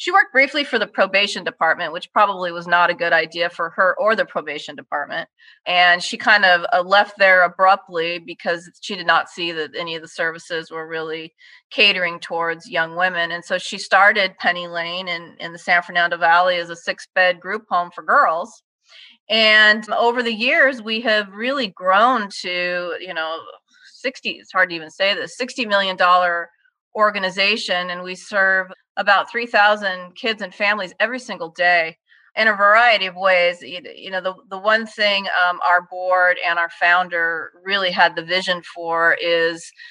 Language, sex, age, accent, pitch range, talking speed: English, female, 30-49, American, 170-200 Hz, 175 wpm